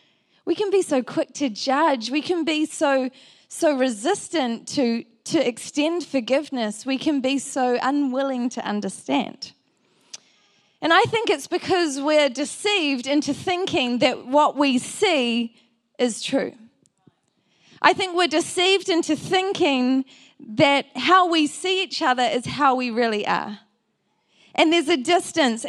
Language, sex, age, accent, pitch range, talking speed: English, female, 20-39, Australian, 235-305 Hz, 140 wpm